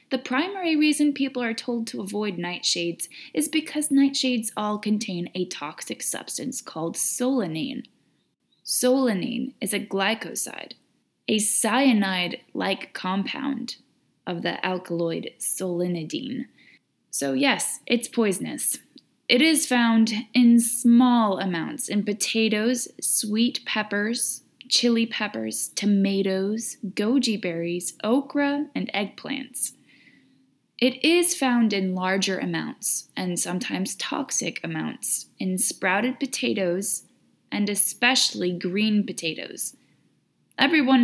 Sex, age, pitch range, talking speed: female, 10-29, 185-255 Hz, 100 wpm